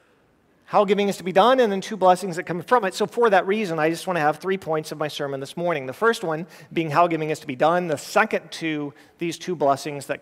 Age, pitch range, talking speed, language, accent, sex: 40-59, 165-210 Hz, 275 wpm, English, American, male